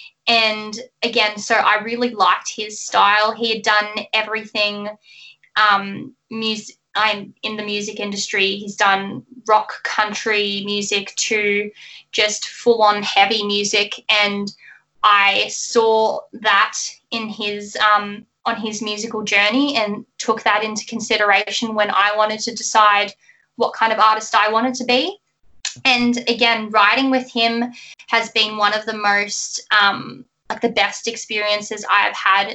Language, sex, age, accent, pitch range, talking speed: English, female, 10-29, Australian, 205-220 Hz, 145 wpm